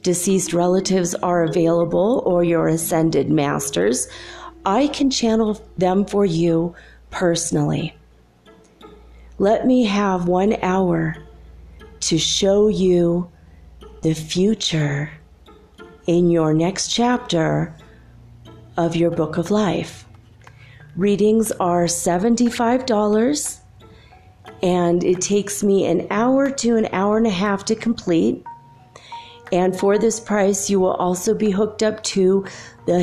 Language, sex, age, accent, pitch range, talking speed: English, female, 40-59, American, 160-210 Hz, 115 wpm